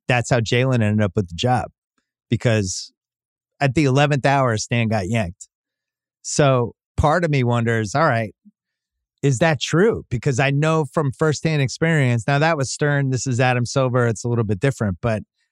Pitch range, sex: 115-145 Hz, male